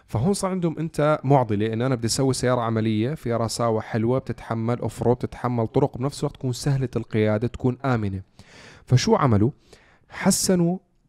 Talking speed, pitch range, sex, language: 150 wpm, 110-135 Hz, male, Arabic